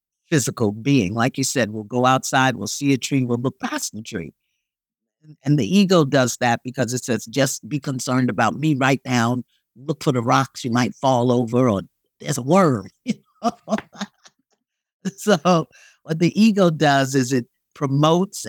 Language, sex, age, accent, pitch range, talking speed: English, male, 50-69, American, 120-165 Hz, 170 wpm